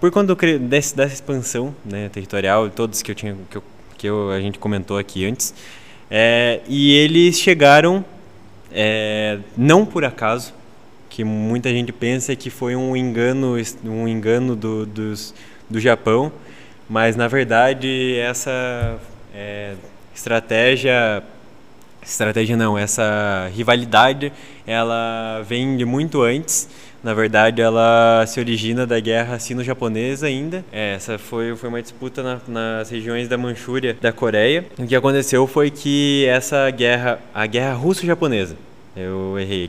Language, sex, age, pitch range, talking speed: Portuguese, male, 20-39, 110-135 Hz, 140 wpm